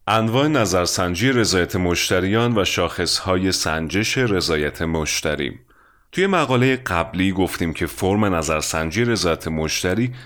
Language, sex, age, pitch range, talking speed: English, male, 30-49, 80-115 Hz, 105 wpm